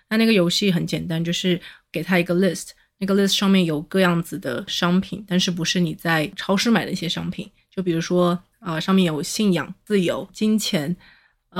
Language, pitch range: Chinese, 170-190 Hz